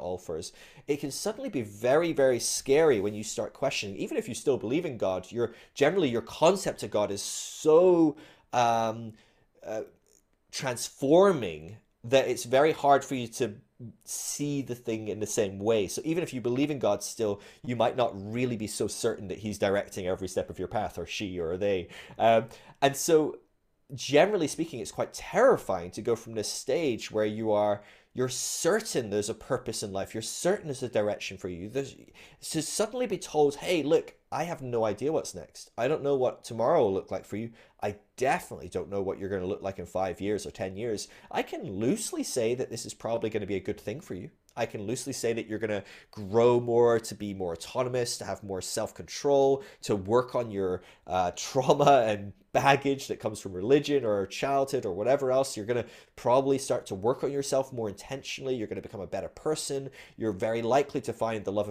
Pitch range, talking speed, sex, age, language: 105-135 Hz, 210 wpm, male, 30-49, English